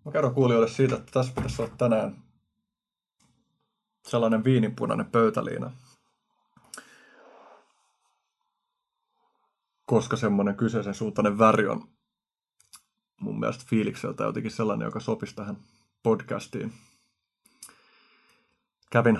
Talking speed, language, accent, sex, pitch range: 90 wpm, Finnish, native, male, 110-135 Hz